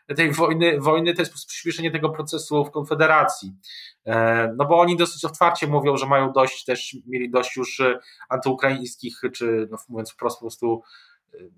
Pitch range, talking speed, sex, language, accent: 125-155 Hz, 155 wpm, male, Polish, native